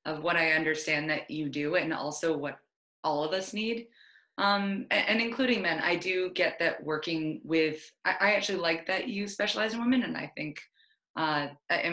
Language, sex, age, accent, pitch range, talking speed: English, female, 20-39, American, 155-195 Hz, 190 wpm